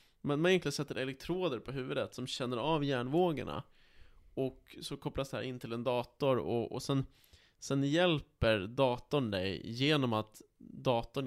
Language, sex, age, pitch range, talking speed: Swedish, male, 20-39, 110-140 Hz, 160 wpm